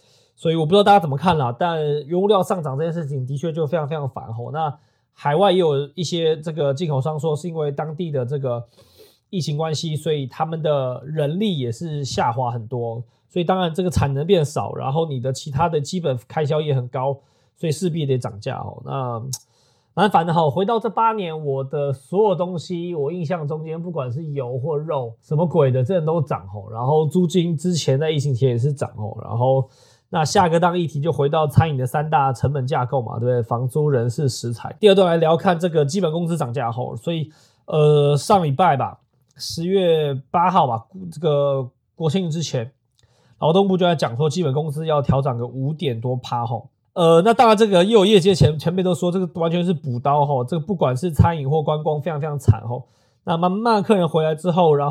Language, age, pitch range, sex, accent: Chinese, 20-39, 130-170 Hz, male, native